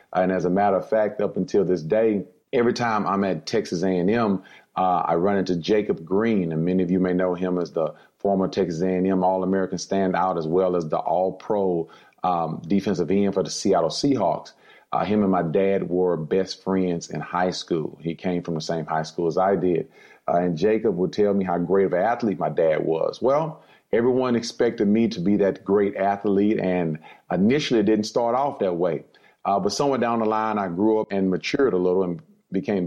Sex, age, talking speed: male, 30-49, 210 wpm